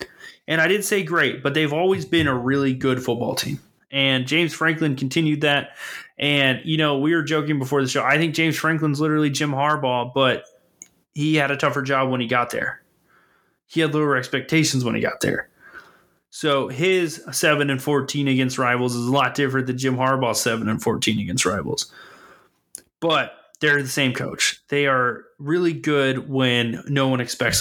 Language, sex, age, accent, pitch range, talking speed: English, male, 20-39, American, 125-155 Hz, 185 wpm